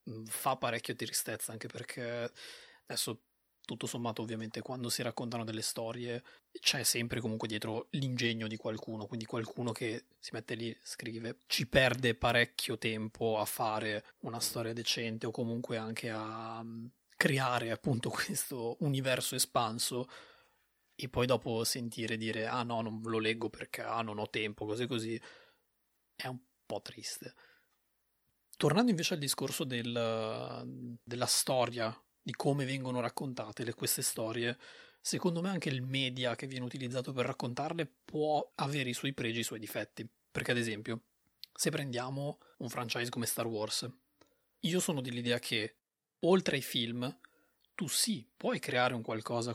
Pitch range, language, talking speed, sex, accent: 115-130 Hz, Italian, 145 wpm, male, native